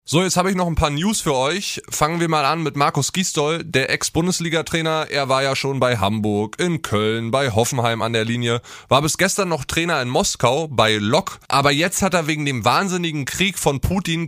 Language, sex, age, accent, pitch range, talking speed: German, male, 20-39, German, 125-160 Hz, 215 wpm